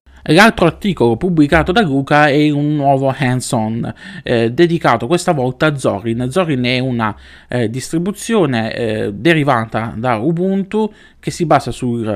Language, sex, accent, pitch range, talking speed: Italian, male, native, 115-140 Hz, 135 wpm